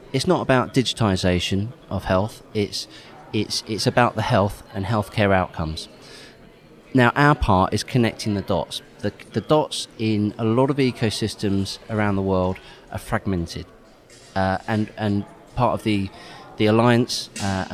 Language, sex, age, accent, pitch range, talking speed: English, male, 30-49, British, 95-115 Hz, 150 wpm